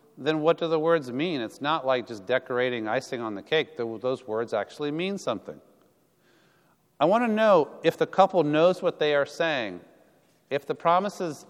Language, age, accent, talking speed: English, 40-59, American, 185 wpm